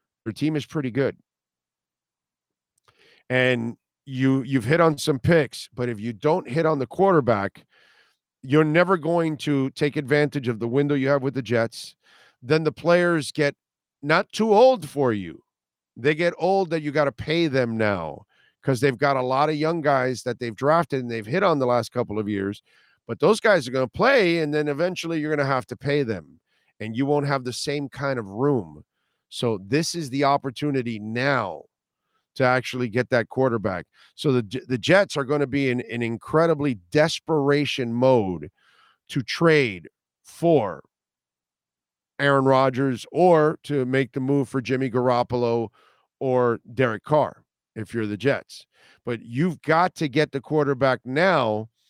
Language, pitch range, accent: English, 120-150 Hz, American